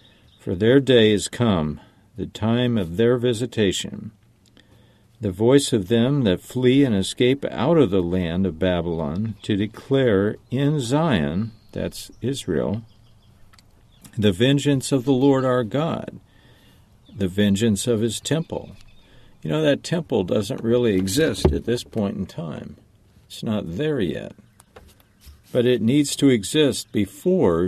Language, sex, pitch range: English, male, 100-125 Hz